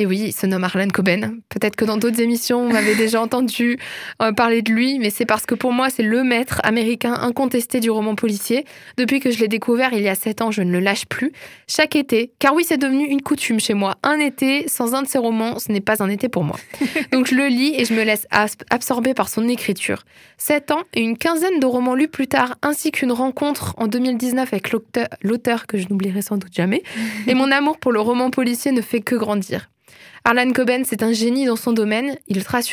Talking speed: 235 wpm